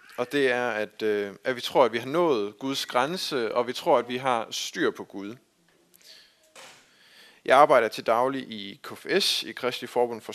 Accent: native